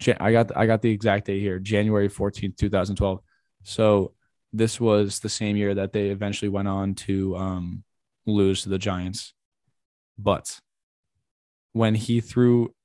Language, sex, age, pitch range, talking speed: English, male, 10-29, 100-120 Hz, 165 wpm